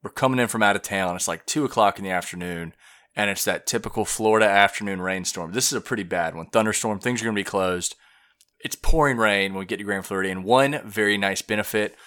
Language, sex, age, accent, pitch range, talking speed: English, male, 30-49, American, 95-110 Hz, 235 wpm